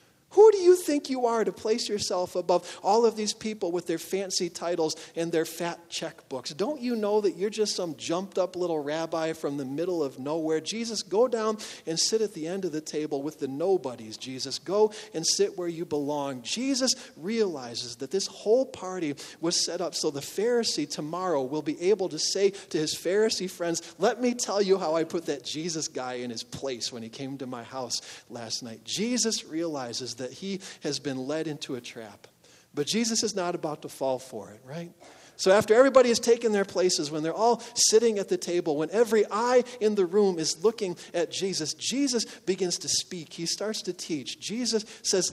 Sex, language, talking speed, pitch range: male, English, 210 wpm, 150-215 Hz